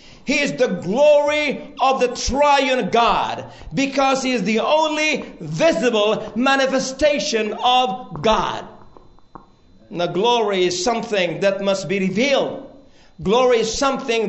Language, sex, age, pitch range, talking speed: English, male, 50-69, 230-280 Hz, 120 wpm